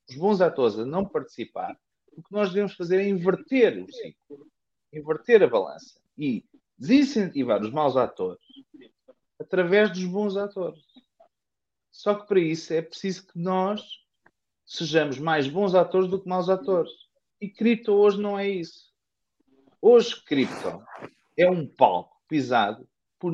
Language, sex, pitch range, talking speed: Portuguese, male, 165-230 Hz, 145 wpm